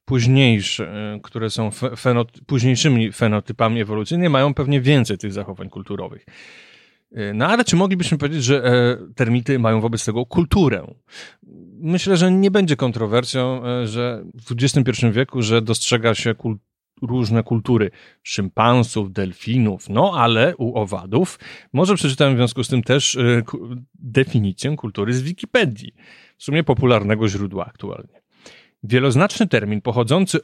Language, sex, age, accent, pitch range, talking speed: Polish, male, 30-49, native, 115-145 Hz, 125 wpm